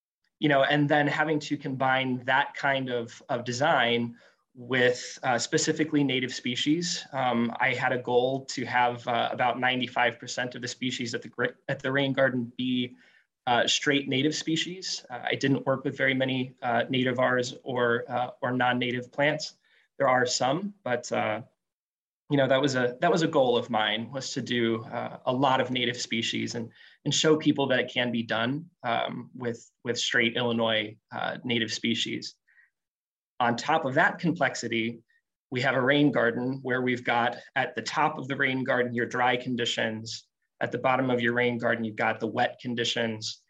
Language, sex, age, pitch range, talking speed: English, male, 20-39, 120-135 Hz, 185 wpm